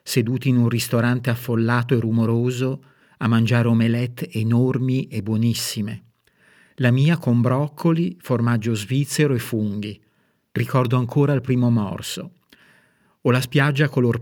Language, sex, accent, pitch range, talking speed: Italian, male, native, 115-130 Hz, 125 wpm